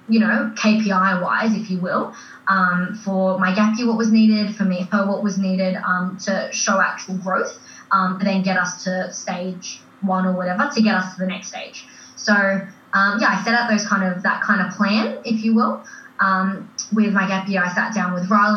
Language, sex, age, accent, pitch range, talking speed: English, female, 20-39, Australian, 185-220 Hz, 220 wpm